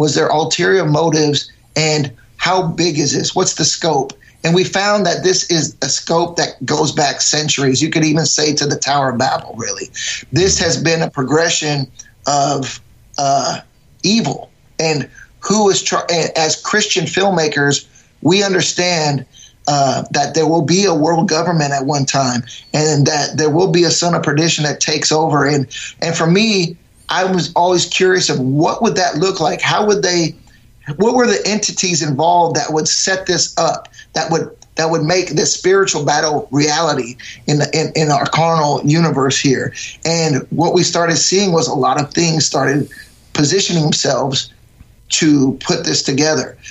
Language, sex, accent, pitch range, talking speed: English, male, American, 140-170 Hz, 175 wpm